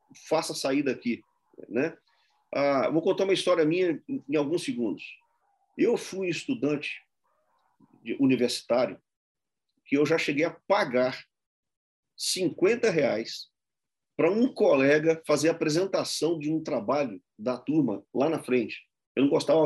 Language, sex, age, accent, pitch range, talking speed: Portuguese, male, 40-59, Brazilian, 120-175 Hz, 135 wpm